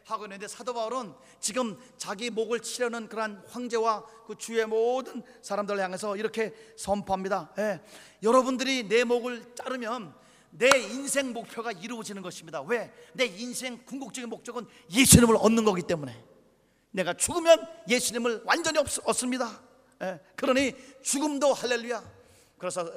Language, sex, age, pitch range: Korean, male, 40-59, 180-240 Hz